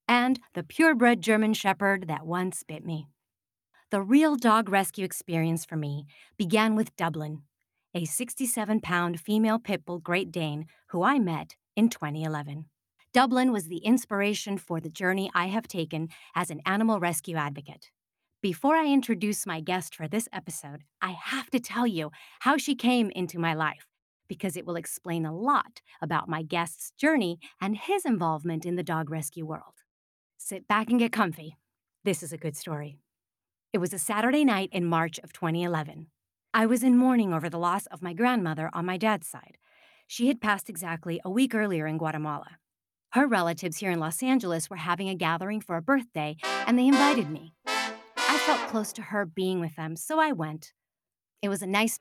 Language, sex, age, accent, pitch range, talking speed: English, female, 30-49, American, 160-225 Hz, 180 wpm